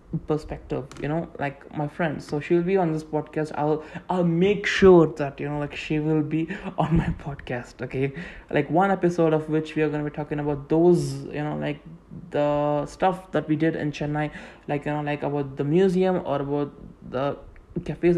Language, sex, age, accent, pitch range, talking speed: English, male, 20-39, Indian, 150-190 Hz, 200 wpm